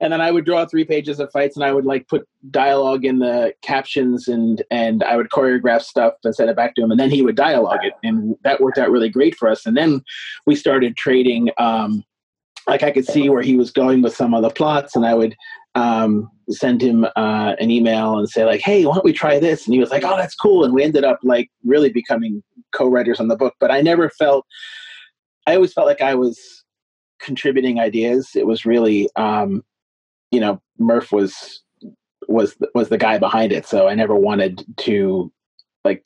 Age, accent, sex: 30-49, American, male